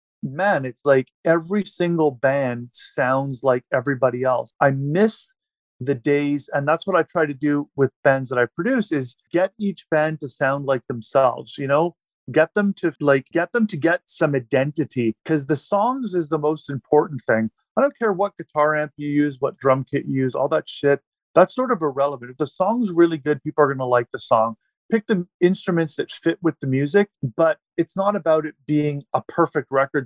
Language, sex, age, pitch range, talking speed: English, male, 40-59, 130-165 Hz, 205 wpm